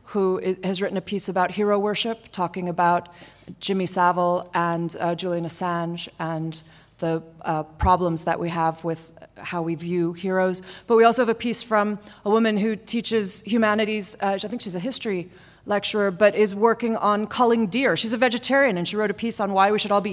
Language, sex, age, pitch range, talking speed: English, female, 30-49, 175-215 Hz, 200 wpm